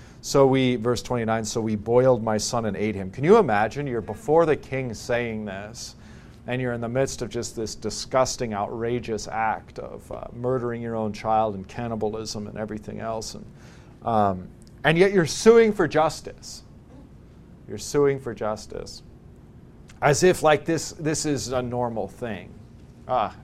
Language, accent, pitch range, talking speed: English, American, 110-145 Hz, 165 wpm